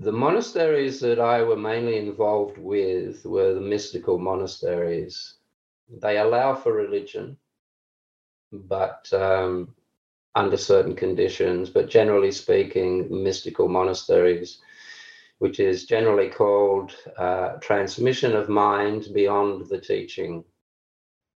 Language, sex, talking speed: English, male, 105 wpm